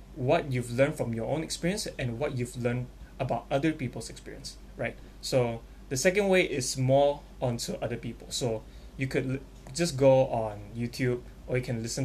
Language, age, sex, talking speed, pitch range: English, 20-39, male, 185 wpm, 115-135 Hz